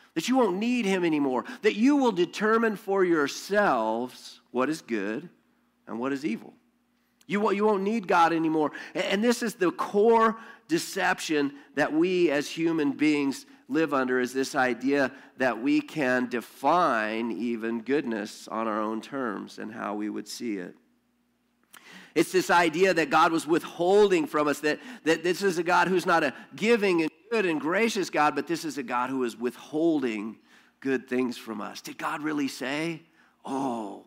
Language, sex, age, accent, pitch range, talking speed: English, male, 50-69, American, 135-195 Hz, 170 wpm